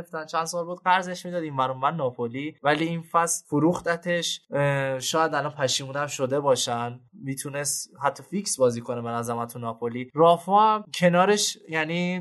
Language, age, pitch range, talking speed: Persian, 20-39, 140-180 Hz, 145 wpm